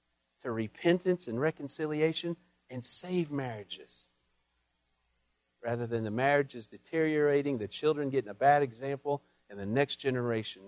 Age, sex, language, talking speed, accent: 50-69, male, English, 125 wpm, American